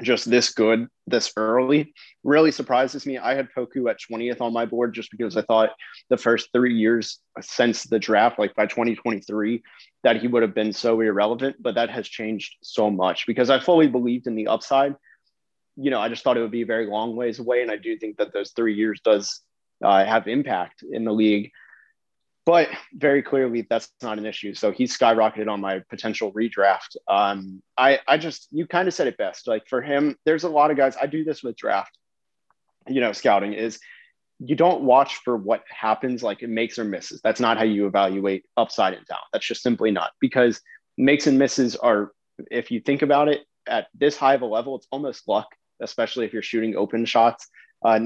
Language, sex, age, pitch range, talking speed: English, male, 30-49, 110-135 Hz, 210 wpm